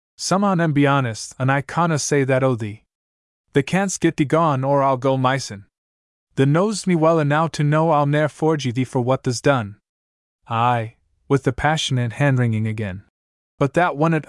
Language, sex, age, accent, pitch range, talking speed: English, male, 20-39, American, 110-155 Hz, 200 wpm